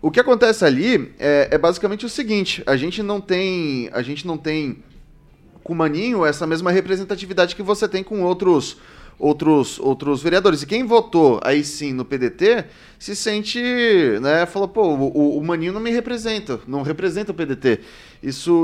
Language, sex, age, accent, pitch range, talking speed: Portuguese, male, 30-49, Brazilian, 140-190 Hz, 175 wpm